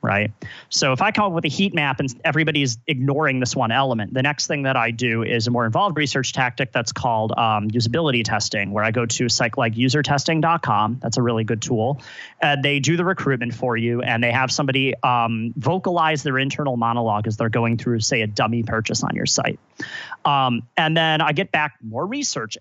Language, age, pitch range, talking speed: English, 30-49, 115-150 Hz, 210 wpm